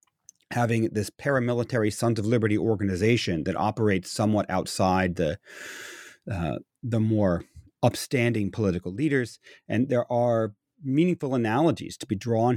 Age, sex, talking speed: 40-59, male, 125 wpm